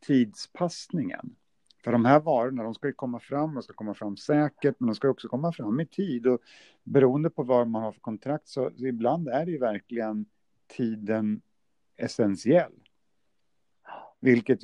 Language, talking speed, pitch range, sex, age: Swedish, 170 wpm, 105-130 Hz, male, 50-69